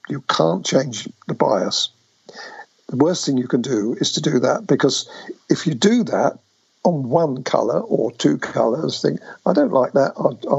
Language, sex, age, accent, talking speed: English, male, 50-69, British, 175 wpm